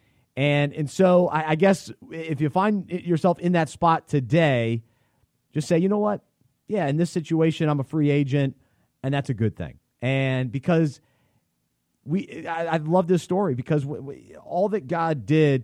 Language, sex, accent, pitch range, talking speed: English, male, American, 125-165 Hz, 175 wpm